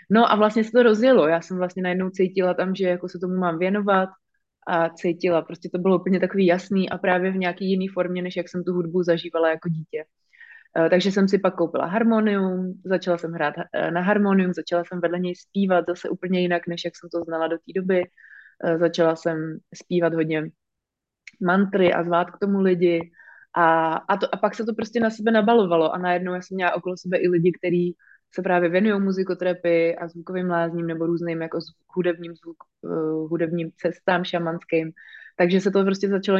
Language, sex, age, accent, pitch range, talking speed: Czech, female, 20-39, native, 170-190 Hz, 195 wpm